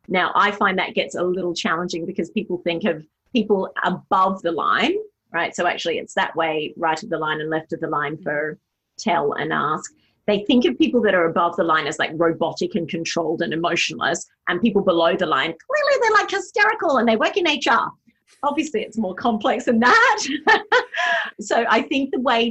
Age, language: 30-49, English